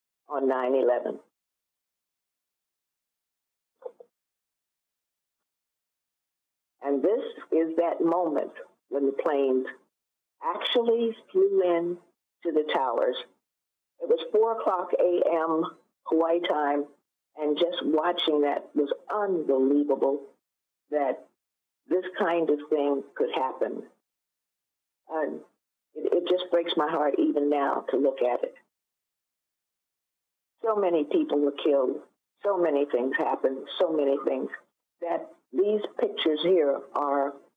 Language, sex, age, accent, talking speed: English, female, 50-69, American, 105 wpm